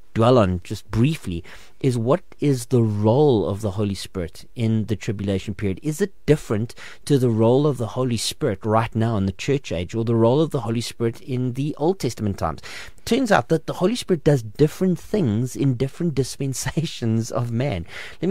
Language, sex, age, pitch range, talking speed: English, male, 30-49, 110-145 Hz, 195 wpm